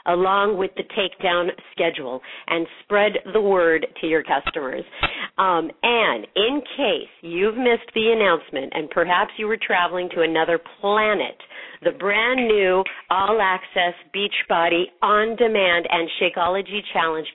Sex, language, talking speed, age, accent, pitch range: female, English, 130 wpm, 50-69, American, 165-210 Hz